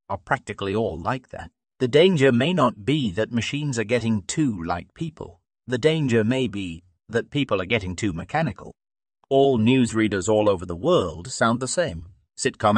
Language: English